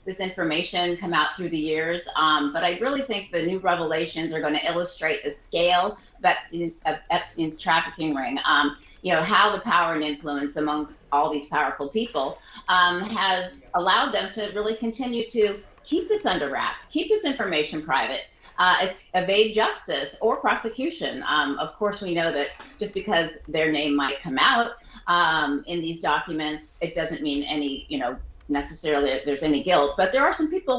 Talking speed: 180 wpm